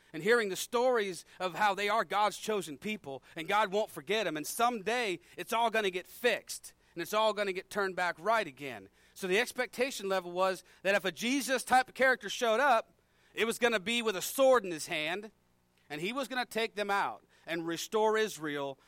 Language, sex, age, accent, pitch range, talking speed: English, male, 40-59, American, 140-220 Hz, 225 wpm